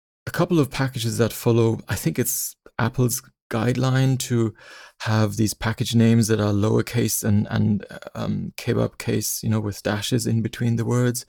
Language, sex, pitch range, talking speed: English, male, 105-125 Hz, 170 wpm